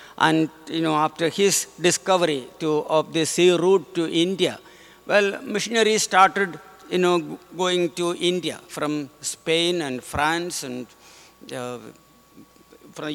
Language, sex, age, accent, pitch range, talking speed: English, male, 60-79, Indian, 155-190 Hz, 130 wpm